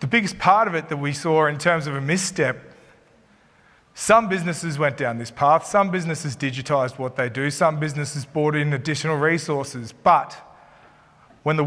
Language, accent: English, Australian